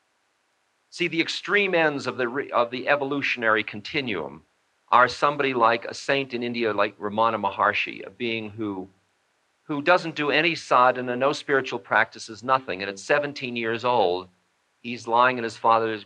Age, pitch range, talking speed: 50-69, 100-120 Hz, 160 wpm